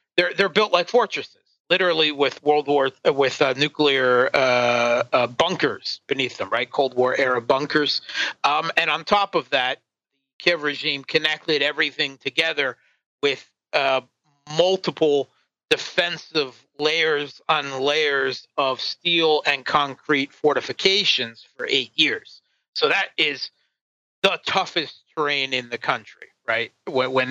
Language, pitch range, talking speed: English, 135-175 Hz, 130 wpm